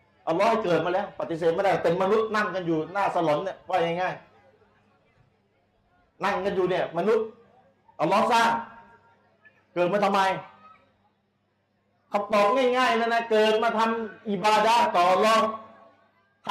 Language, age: Thai, 30-49